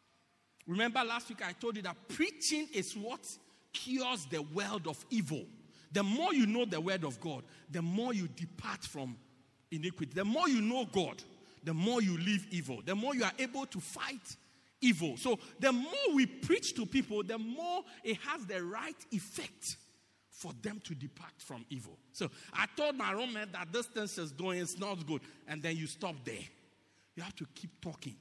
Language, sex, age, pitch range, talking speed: English, male, 50-69, 180-270 Hz, 195 wpm